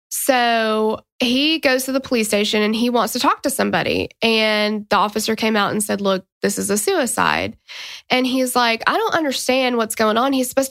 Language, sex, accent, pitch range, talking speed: English, female, American, 215-260 Hz, 205 wpm